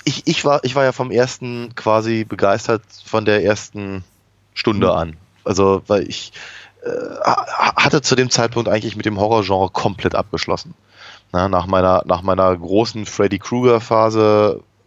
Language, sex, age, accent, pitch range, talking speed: German, male, 20-39, German, 95-115 Hz, 155 wpm